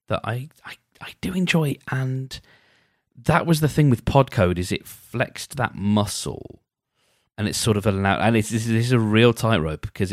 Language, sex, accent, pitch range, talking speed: English, male, British, 95-125 Hz, 185 wpm